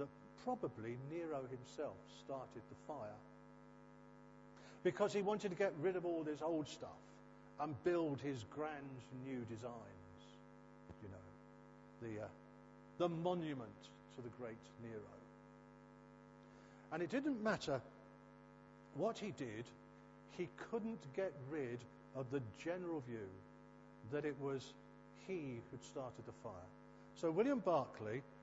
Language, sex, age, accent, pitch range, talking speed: English, male, 50-69, British, 125-165 Hz, 125 wpm